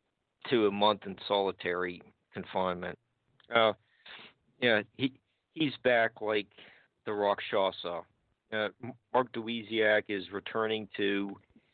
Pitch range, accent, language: 100-115 Hz, American, English